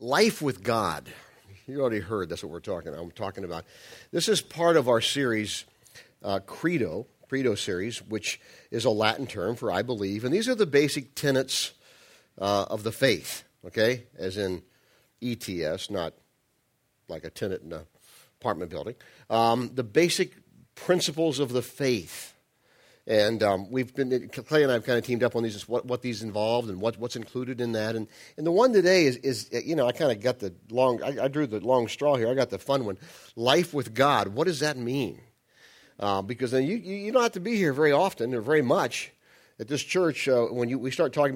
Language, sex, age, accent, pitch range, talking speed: English, male, 50-69, American, 110-145 Hz, 205 wpm